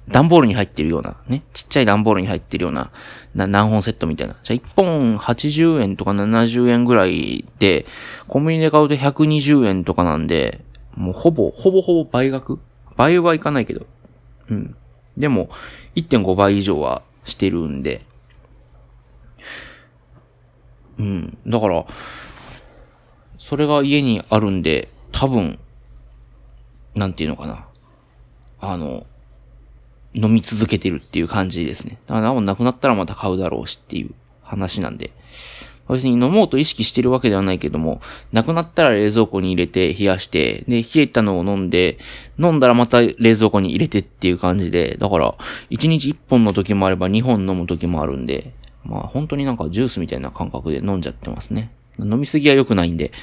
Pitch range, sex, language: 85-125 Hz, male, Japanese